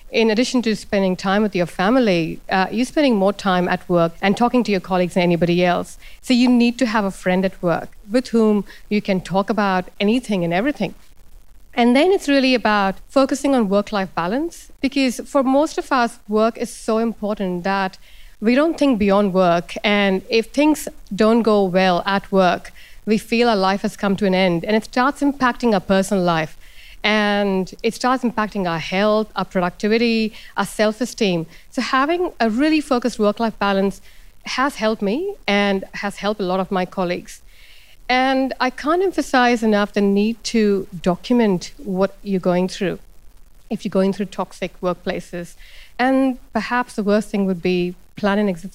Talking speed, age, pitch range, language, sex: 180 wpm, 60-79, 190-235 Hz, English, female